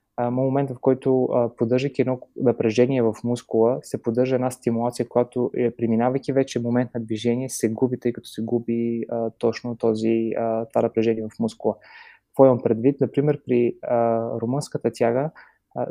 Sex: male